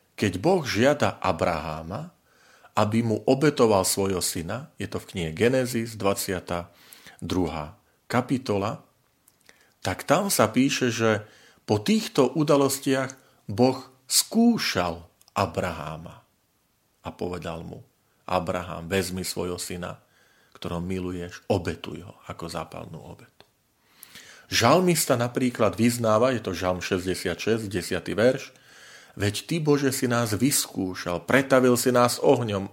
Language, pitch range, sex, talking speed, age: Slovak, 90-130 Hz, male, 110 wpm, 40-59